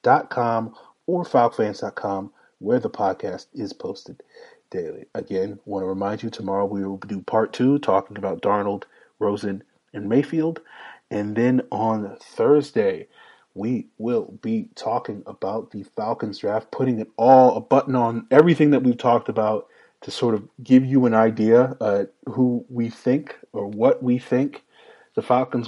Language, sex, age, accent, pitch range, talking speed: English, male, 30-49, American, 100-130 Hz, 155 wpm